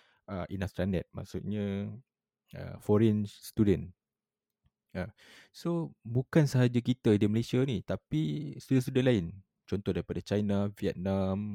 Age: 20-39